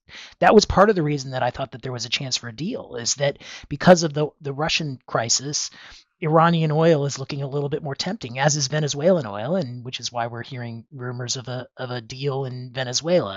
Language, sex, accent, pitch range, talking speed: English, male, American, 120-160 Hz, 235 wpm